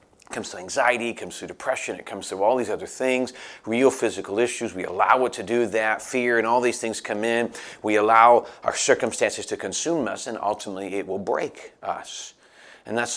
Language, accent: English, American